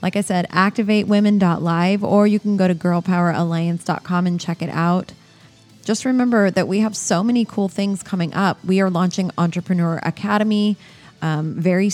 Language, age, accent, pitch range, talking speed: English, 20-39, American, 170-205 Hz, 160 wpm